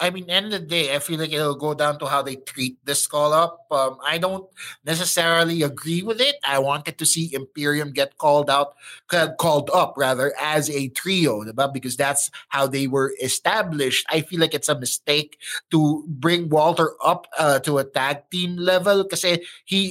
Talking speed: 200 wpm